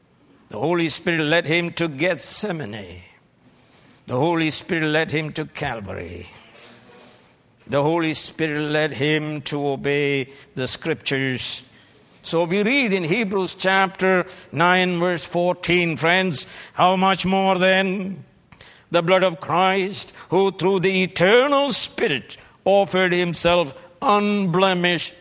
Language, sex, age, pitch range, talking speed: English, male, 60-79, 140-185 Hz, 115 wpm